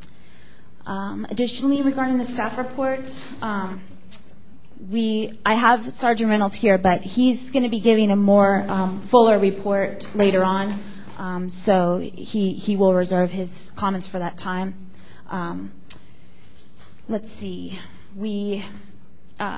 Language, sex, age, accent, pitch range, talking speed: English, female, 20-39, American, 185-215 Hz, 130 wpm